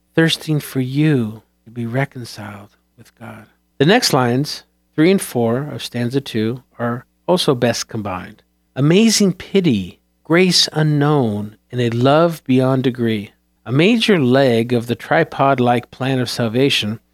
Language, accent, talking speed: English, American, 135 wpm